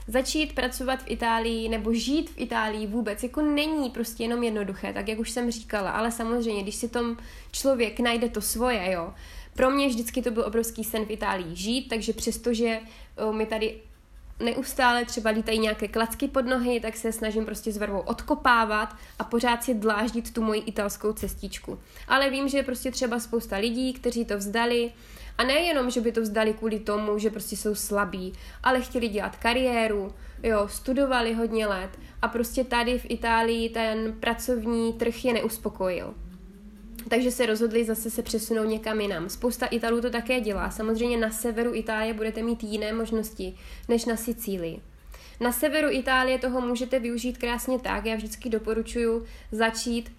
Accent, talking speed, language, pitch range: native, 170 wpm, Czech, 220-245 Hz